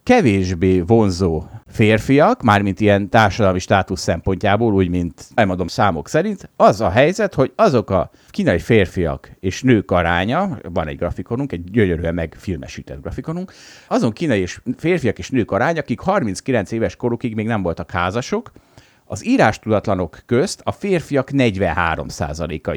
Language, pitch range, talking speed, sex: Hungarian, 95-130 Hz, 135 wpm, male